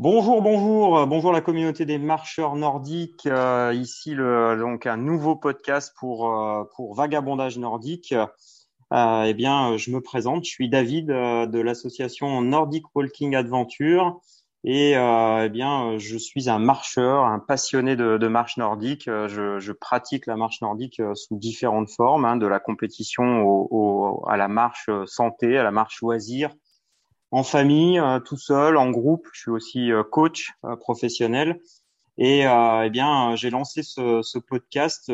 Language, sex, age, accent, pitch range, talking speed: French, male, 30-49, French, 110-140 Hz, 160 wpm